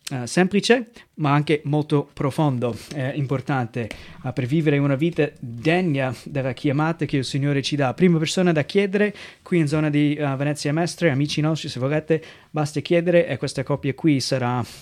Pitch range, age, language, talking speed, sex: 135-175 Hz, 30-49, Italian, 160 wpm, male